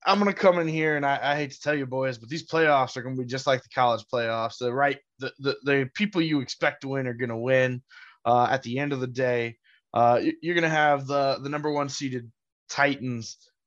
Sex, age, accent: male, 20-39, American